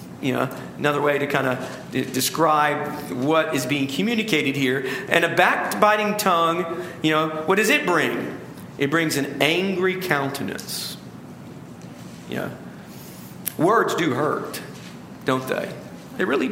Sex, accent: male, American